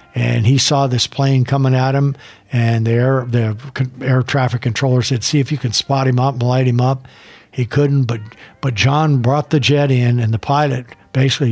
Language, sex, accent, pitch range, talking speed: English, male, American, 115-135 Hz, 210 wpm